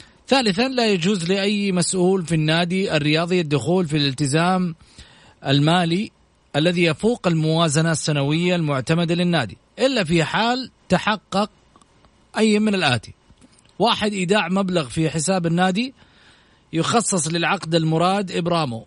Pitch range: 160-190 Hz